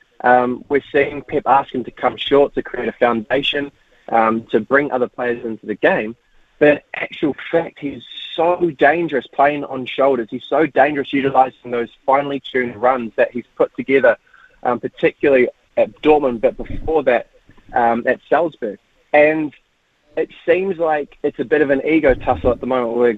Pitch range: 125-150 Hz